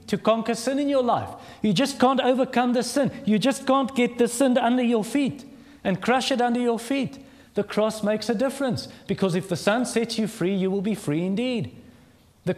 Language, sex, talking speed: English, male, 215 wpm